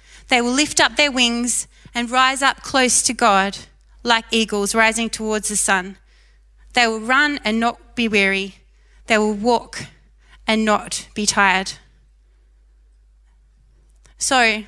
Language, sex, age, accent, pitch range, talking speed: English, female, 20-39, Australian, 200-235 Hz, 135 wpm